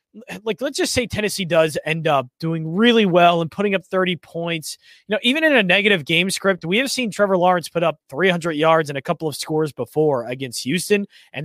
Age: 20-39